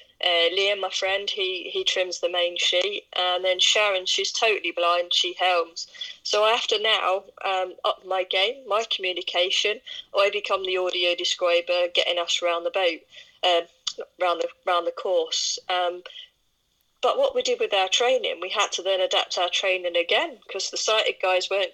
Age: 20-39